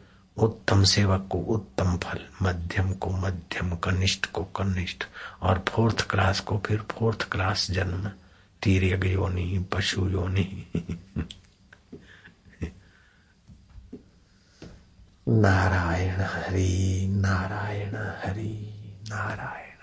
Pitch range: 95-100 Hz